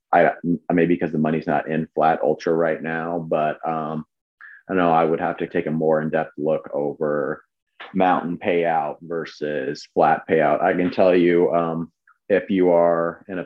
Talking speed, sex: 180 wpm, male